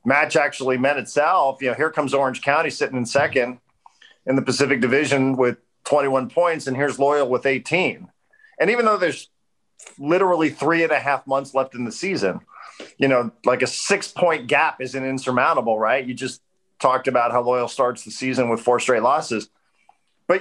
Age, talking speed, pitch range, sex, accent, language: 40-59, 190 wpm, 130-160 Hz, male, American, English